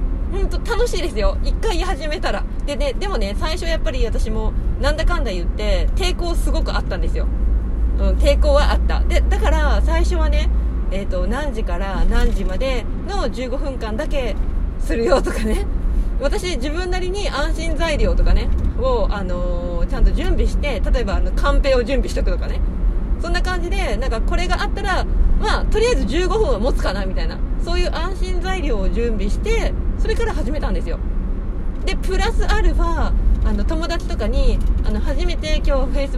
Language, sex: Japanese, female